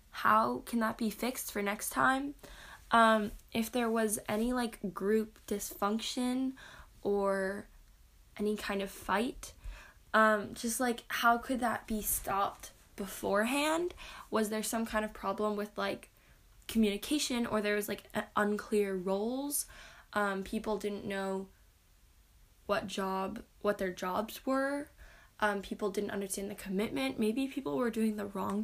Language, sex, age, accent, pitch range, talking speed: English, female, 10-29, American, 200-230 Hz, 140 wpm